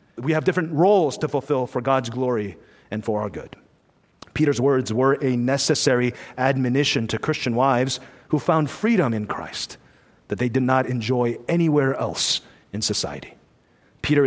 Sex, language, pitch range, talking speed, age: male, English, 125-160 Hz, 155 wpm, 40-59